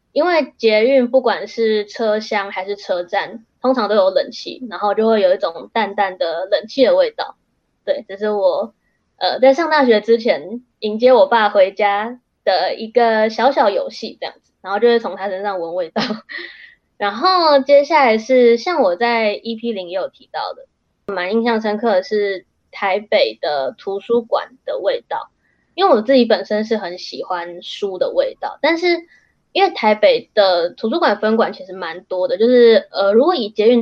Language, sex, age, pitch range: Chinese, female, 10-29, 205-275 Hz